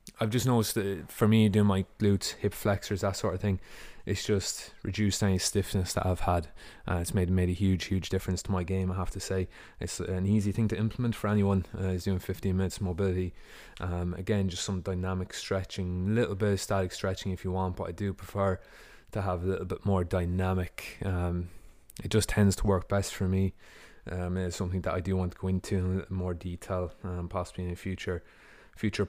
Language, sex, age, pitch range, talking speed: English, male, 20-39, 90-105 Hz, 225 wpm